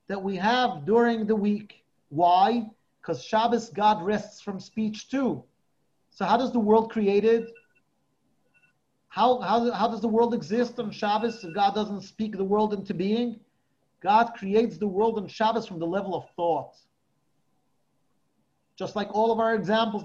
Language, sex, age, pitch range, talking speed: English, male, 40-59, 175-230 Hz, 160 wpm